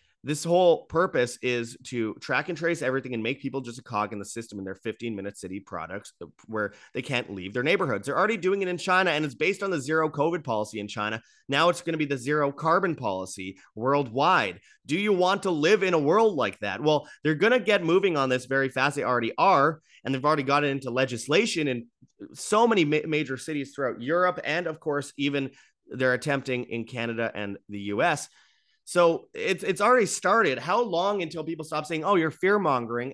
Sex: male